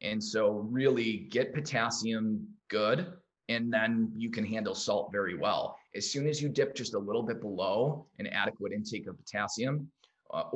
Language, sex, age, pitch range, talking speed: English, male, 20-39, 105-150 Hz, 170 wpm